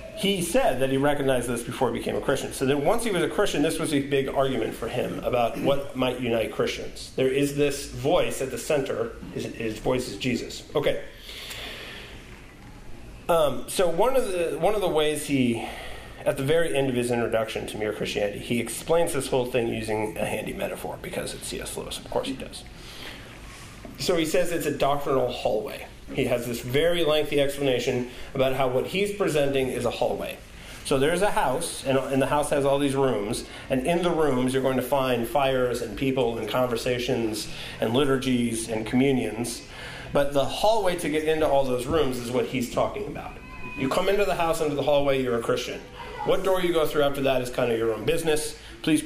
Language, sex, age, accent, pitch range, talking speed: English, male, 40-59, American, 125-150 Hz, 205 wpm